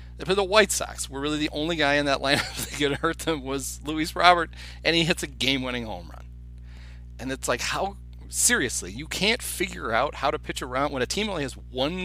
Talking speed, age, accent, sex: 225 wpm, 40-59, American, male